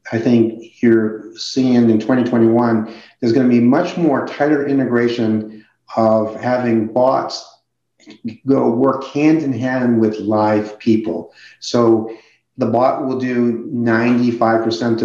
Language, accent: English, American